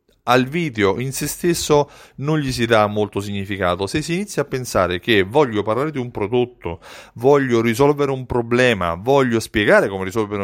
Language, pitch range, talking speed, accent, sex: Italian, 100-150 Hz, 170 wpm, native, male